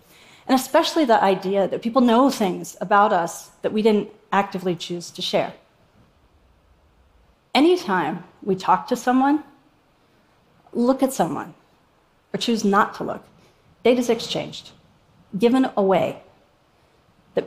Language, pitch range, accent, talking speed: Russian, 185-235 Hz, American, 125 wpm